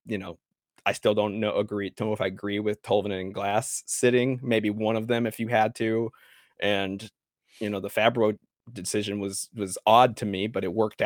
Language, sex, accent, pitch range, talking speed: English, male, American, 100-115 Hz, 210 wpm